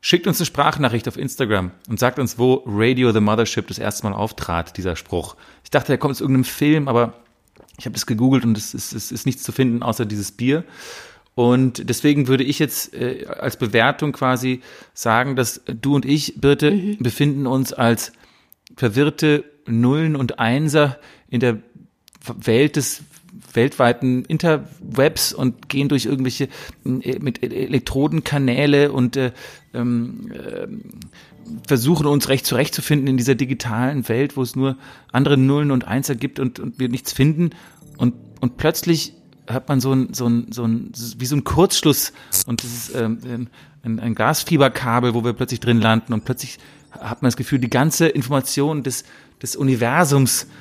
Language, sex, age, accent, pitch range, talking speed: German, male, 40-59, German, 120-145 Hz, 160 wpm